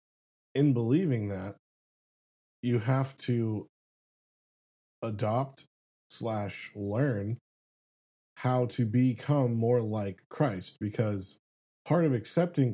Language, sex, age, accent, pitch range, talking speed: English, male, 20-39, American, 100-125 Hz, 90 wpm